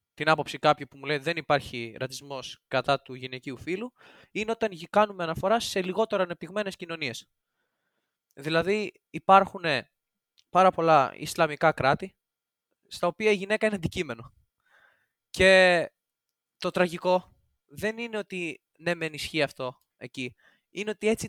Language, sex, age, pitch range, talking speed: Greek, male, 20-39, 145-200 Hz, 130 wpm